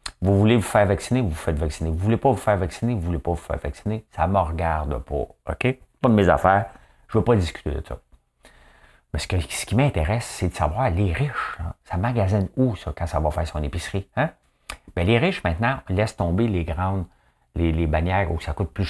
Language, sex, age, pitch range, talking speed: English, male, 50-69, 80-105 Hz, 245 wpm